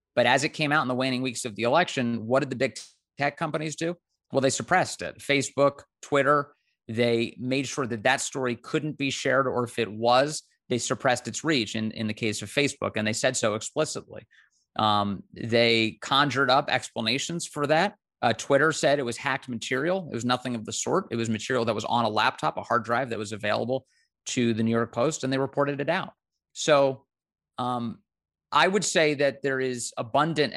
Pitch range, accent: 110-140 Hz, American